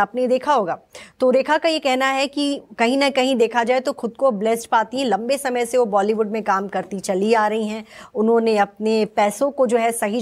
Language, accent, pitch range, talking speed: English, Indian, 210-255 Hz, 235 wpm